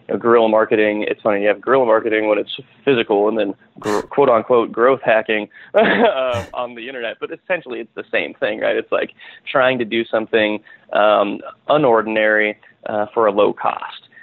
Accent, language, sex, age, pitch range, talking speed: American, English, male, 20-39, 110-145 Hz, 180 wpm